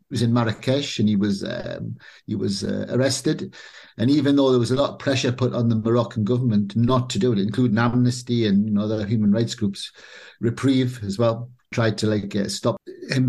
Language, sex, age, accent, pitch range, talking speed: English, male, 50-69, British, 115-135 Hz, 210 wpm